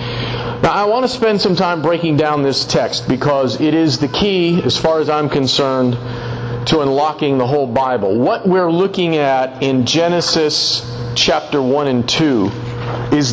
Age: 40-59